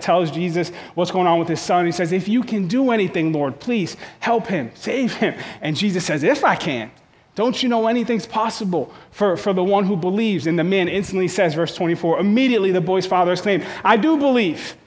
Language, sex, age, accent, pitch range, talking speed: English, male, 30-49, American, 180-230 Hz, 215 wpm